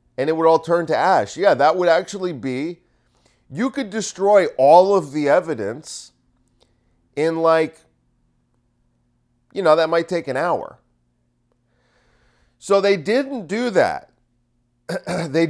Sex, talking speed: male, 130 wpm